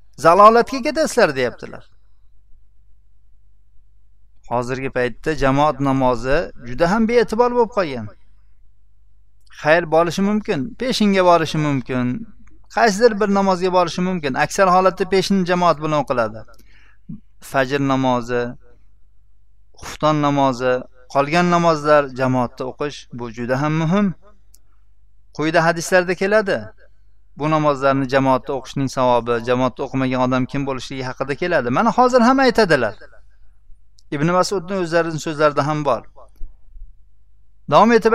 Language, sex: Russian, male